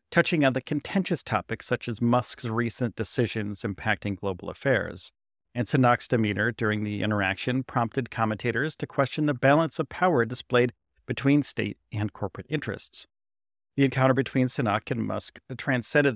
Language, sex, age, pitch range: English, male, 40-59, 105-130 Hz